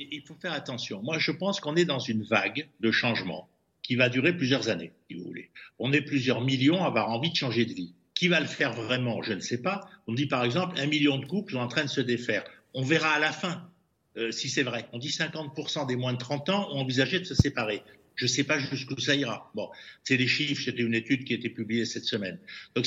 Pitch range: 120-160 Hz